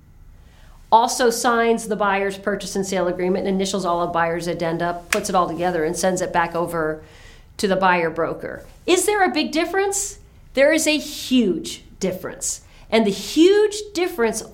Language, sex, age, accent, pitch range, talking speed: English, female, 40-59, American, 170-275 Hz, 170 wpm